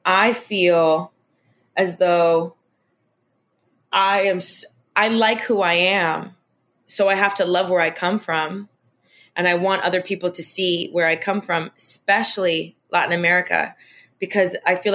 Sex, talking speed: female, 150 wpm